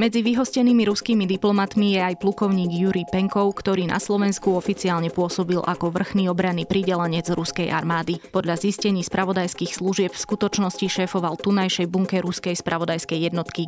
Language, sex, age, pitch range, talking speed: Slovak, female, 20-39, 165-195 Hz, 140 wpm